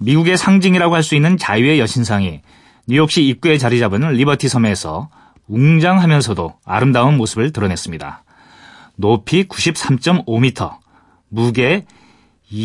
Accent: native